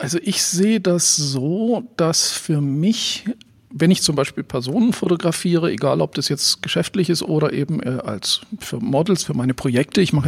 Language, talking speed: German, 175 wpm